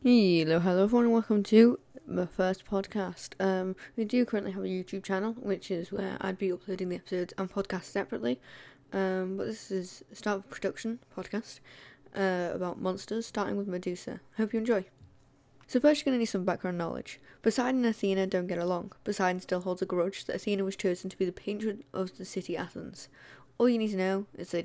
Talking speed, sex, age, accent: 210 wpm, female, 10-29, British